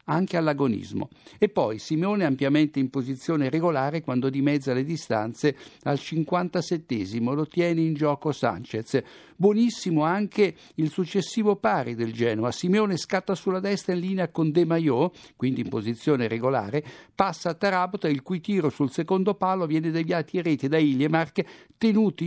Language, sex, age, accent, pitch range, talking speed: Italian, male, 60-79, native, 135-180 Hz, 150 wpm